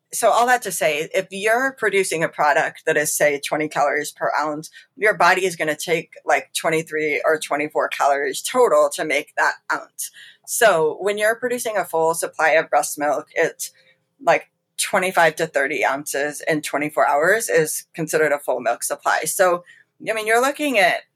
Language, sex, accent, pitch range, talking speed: English, female, American, 160-220 Hz, 180 wpm